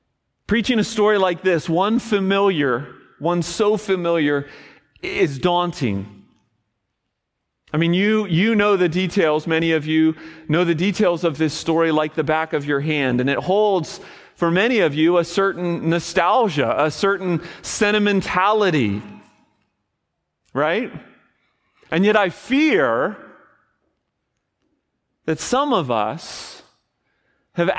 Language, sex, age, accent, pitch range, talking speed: English, male, 40-59, American, 150-195 Hz, 125 wpm